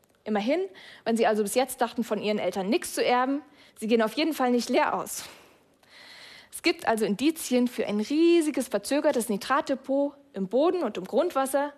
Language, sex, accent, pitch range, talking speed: German, female, German, 210-280 Hz, 180 wpm